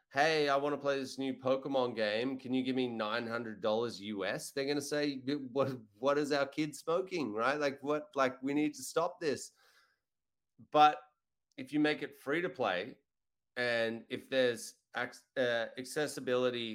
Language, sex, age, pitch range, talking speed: English, male, 30-49, 110-140 Hz, 170 wpm